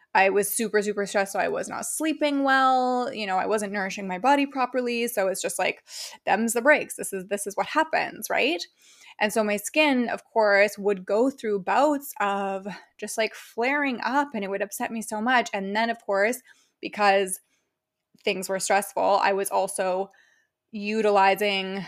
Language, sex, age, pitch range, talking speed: English, female, 20-39, 200-250 Hz, 180 wpm